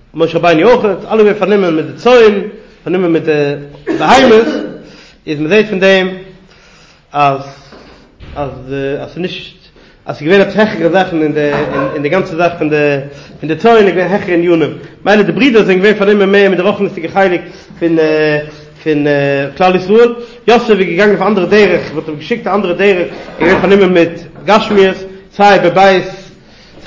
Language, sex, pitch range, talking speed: English, male, 160-195 Hz, 170 wpm